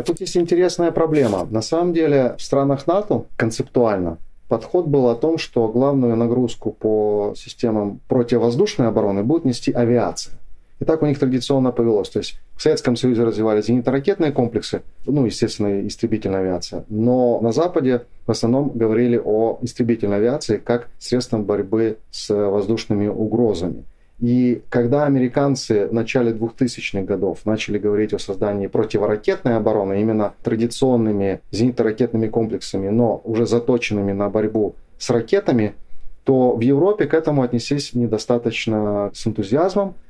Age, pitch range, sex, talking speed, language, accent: 30-49, 110-130 Hz, male, 140 wpm, Russian, native